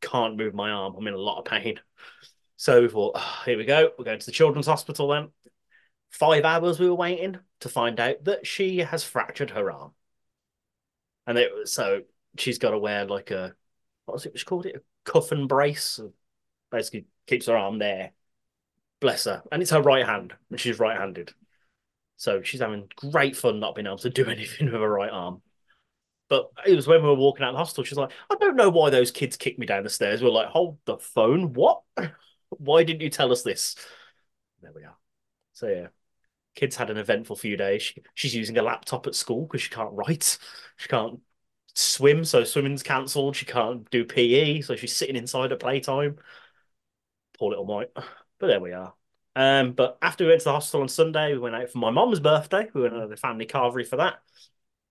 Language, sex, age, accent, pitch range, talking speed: English, male, 30-49, British, 125-180 Hz, 210 wpm